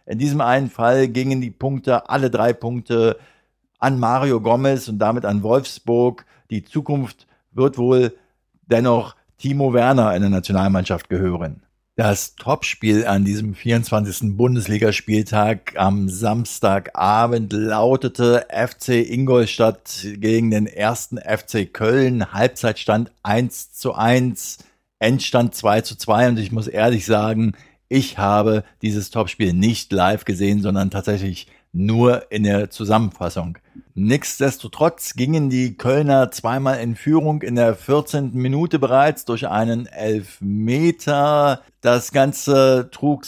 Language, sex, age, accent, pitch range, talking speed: German, male, 50-69, German, 110-135 Hz, 120 wpm